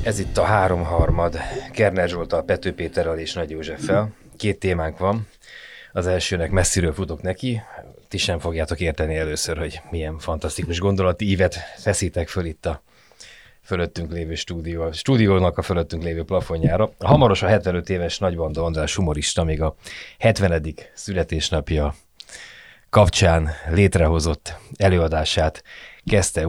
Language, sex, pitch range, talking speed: Hungarian, male, 80-100 Hz, 125 wpm